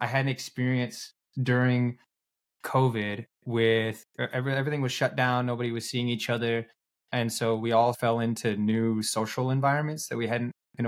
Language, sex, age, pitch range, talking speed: English, male, 20-39, 110-135 Hz, 160 wpm